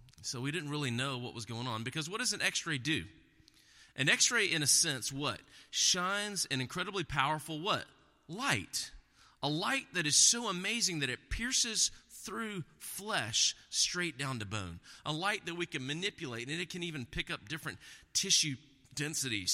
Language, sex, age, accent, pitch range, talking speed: English, male, 30-49, American, 110-155 Hz, 175 wpm